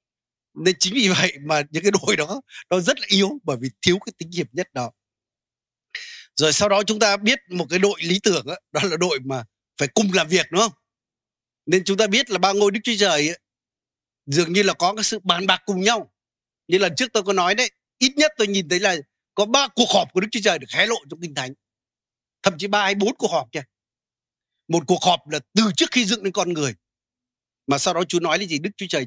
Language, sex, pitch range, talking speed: Vietnamese, male, 140-205 Hz, 250 wpm